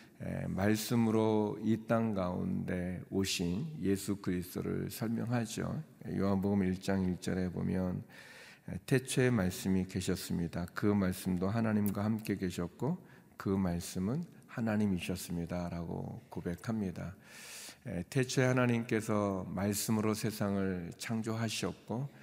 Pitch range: 95-110 Hz